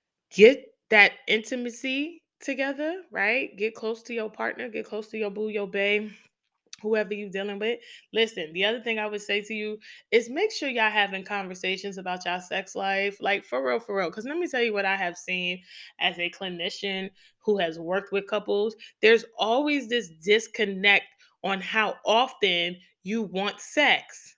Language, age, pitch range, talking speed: English, 20-39, 195-280 Hz, 175 wpm